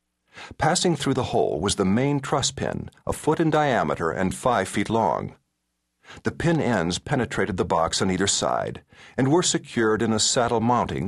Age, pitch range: 50-69, 95-135 Hz